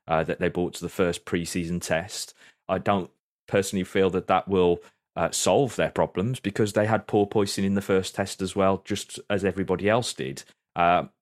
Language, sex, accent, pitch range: English, male, British, 80-100 Hz